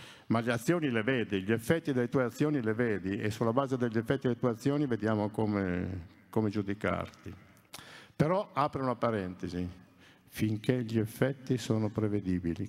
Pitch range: 105-150 Hz